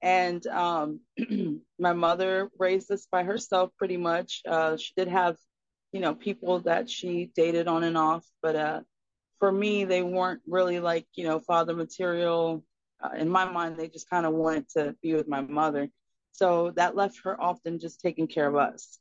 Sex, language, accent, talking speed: female, English, American, 185 wpm